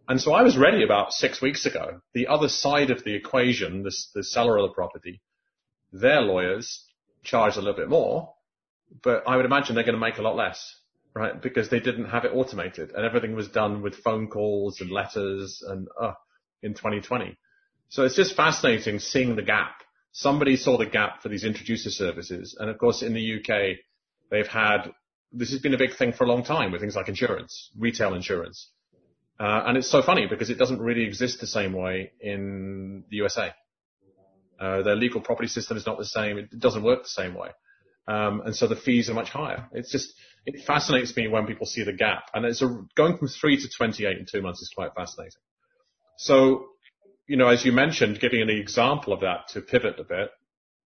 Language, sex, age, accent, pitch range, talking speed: English, male, 30-49, British, 105-130 Hz, 210 wpm